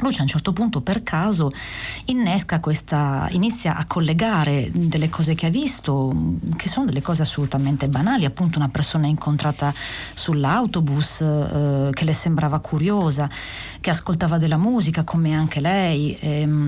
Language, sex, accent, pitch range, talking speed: Italian, female, native, 145-175 Hz, 150 wpm